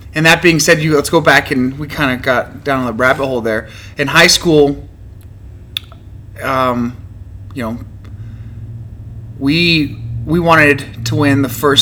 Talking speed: 160 wpm